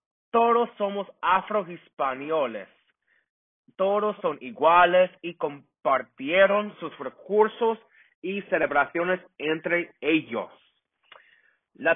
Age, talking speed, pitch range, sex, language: 30-49, 75 wpm, 135-190 Hz, male, English